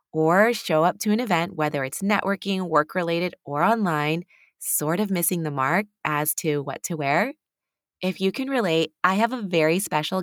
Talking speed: 180 wpm